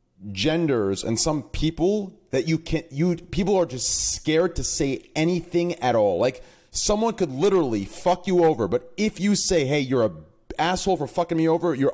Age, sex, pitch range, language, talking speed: 30-49, male, 115-160 Hz, English, 185 wpm